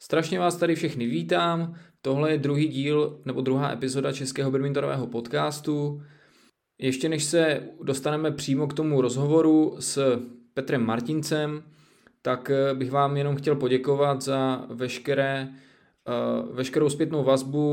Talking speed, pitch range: 125 wpm, 130-145 Hz